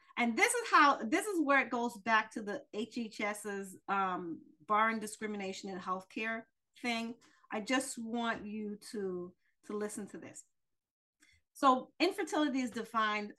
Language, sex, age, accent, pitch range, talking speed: English, female, 40-59, American, 190-255 Hz, 145 wpm